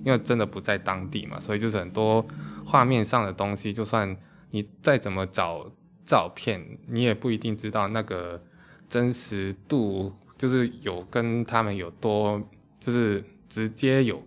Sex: male